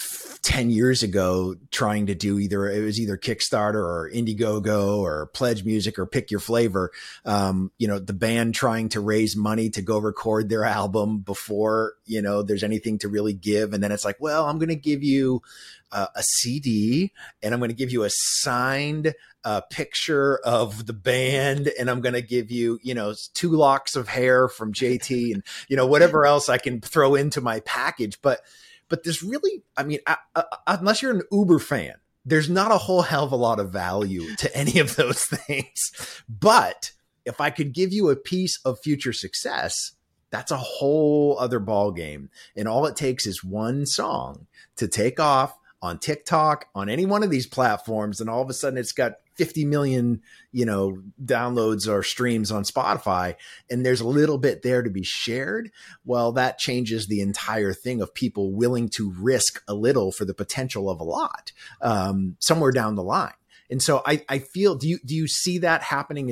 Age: 30-49